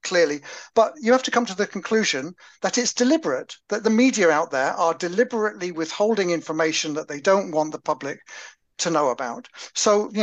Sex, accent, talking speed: male, British, 190 wpm